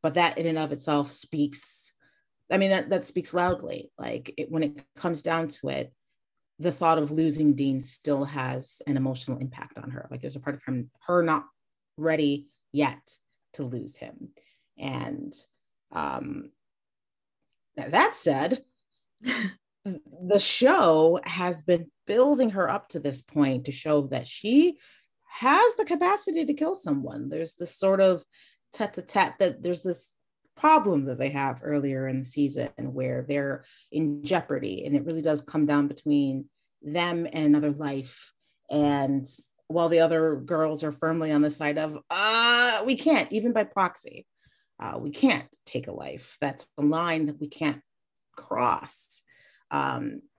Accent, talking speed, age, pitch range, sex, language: American, 155 wpm, 30-49, 145-215 Hz, female, English